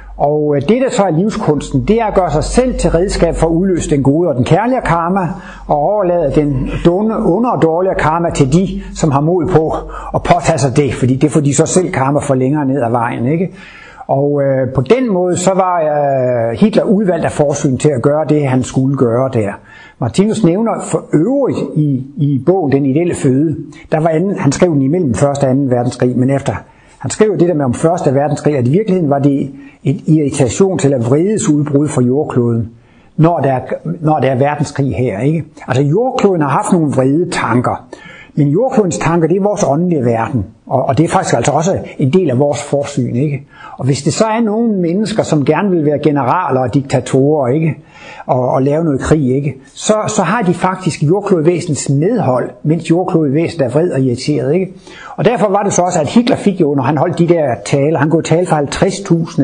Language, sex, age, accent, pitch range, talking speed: Danish, male, 60-79, native, 140-180 Hz, 215 wpm